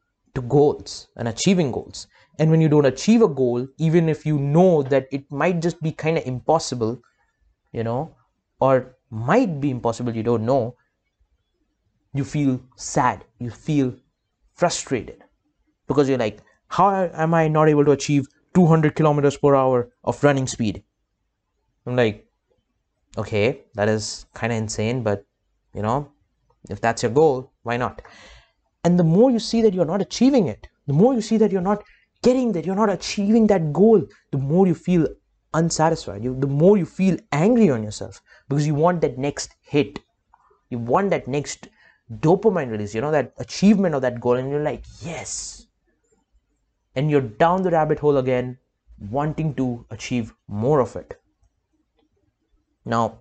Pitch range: 120-165 Hz